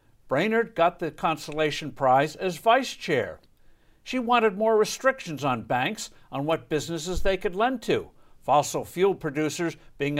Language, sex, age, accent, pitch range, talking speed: English, male, 60-79, American, 140-195 Hz, 145 wpm